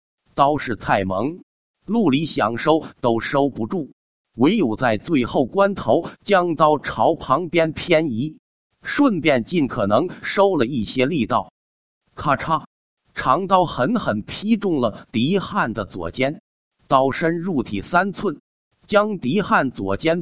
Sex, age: male, 50-69